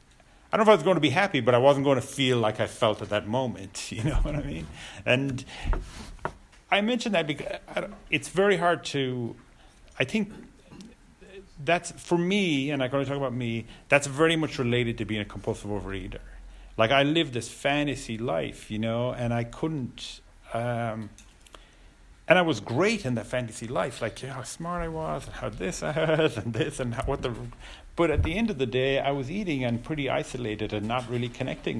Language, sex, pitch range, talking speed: English, male, 105-140 Hz, 205 wpm